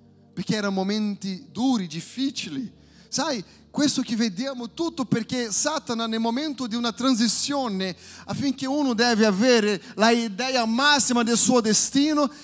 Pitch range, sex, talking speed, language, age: 215-275 Hz, male, 130 wpm, Italian, 30-49